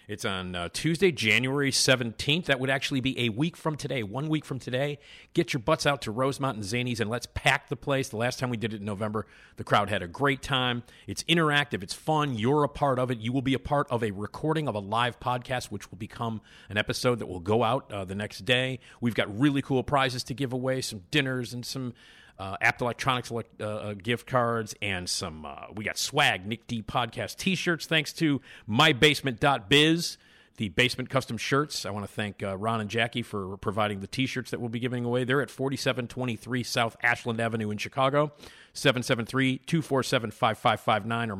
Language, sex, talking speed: English, male, 205 wpm